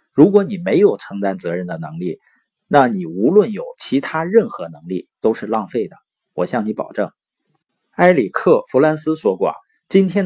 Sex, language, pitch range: male, Chinese, 125-185 Hz